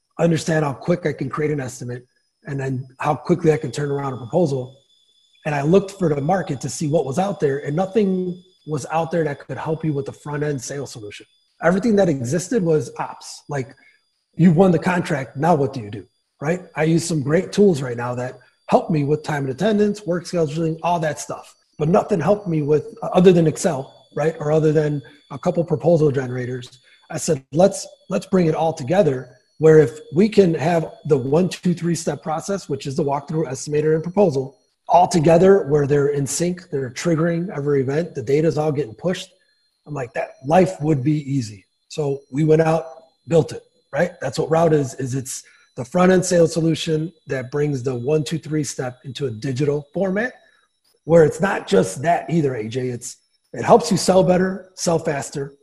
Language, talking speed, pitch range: English, 205 wpm, 140-175 Hz